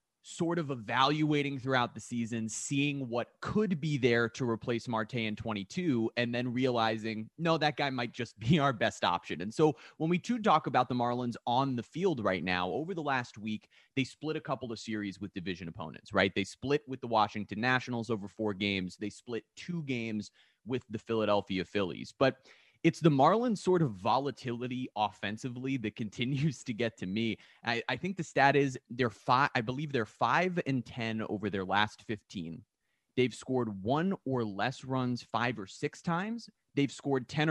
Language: English